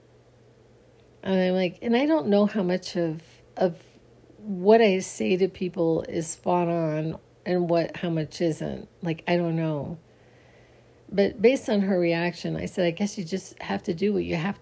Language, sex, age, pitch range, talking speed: English, female, 40-59, 160-200 Hz, 185 wpm